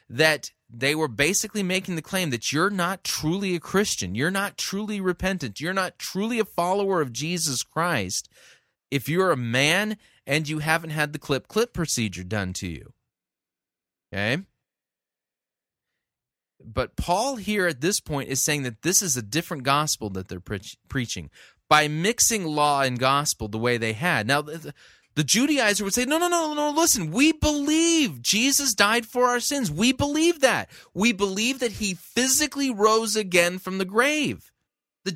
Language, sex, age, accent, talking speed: English, male, 30-49, American, 165 wpm